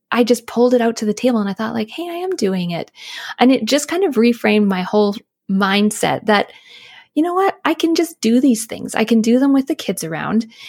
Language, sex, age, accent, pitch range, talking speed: English, female, 20-39, American, 190-245 Hz, 245 wpm